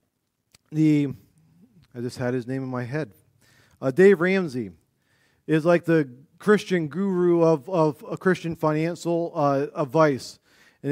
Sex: male